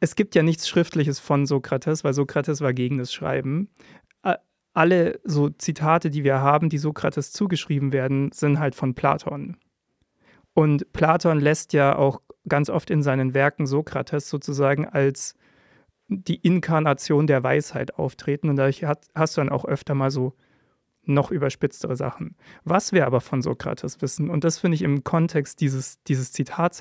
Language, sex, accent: German, male, German